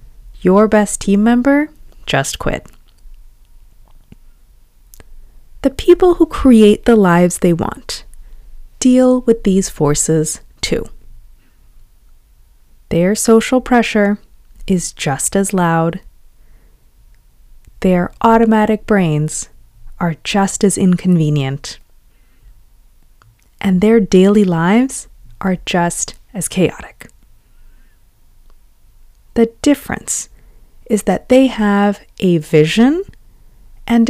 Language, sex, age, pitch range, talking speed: English, female, 20-39, 160-230 Hz, 90 wpm